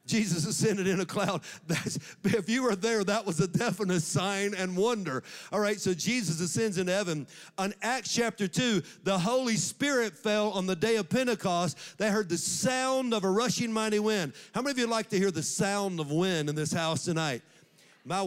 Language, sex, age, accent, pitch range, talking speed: English, male, 50-69, American, 175-220 Hz, 210 wpm